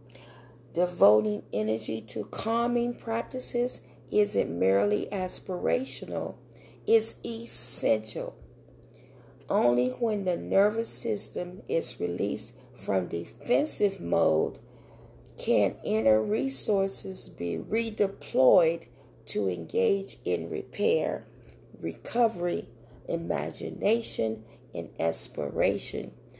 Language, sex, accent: English, female, American